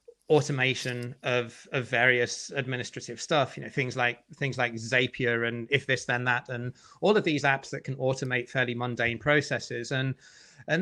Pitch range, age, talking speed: 125-150 Hz, 30-49, 170 wpm